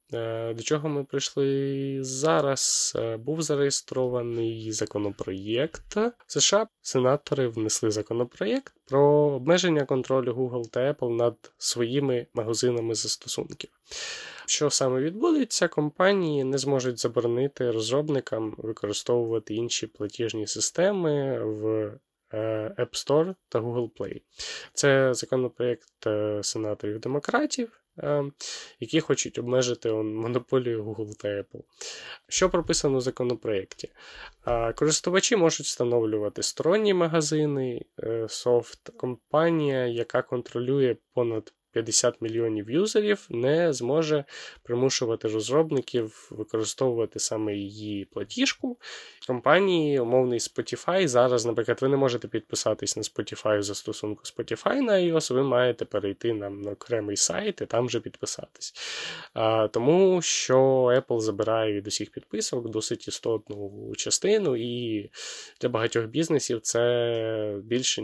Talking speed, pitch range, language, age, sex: 105 wpm, 110-145 Hz, Ukrainian, 20-39, male